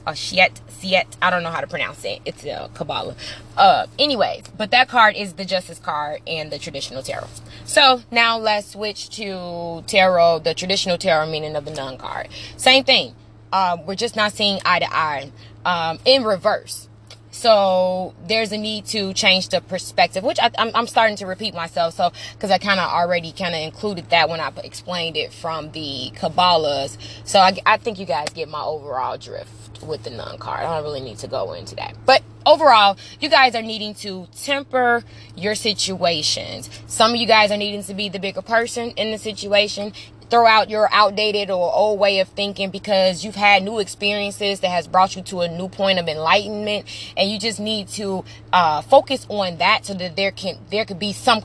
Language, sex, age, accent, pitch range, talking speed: English, female, 20-39, American, 170-215 Hz, 200 wpm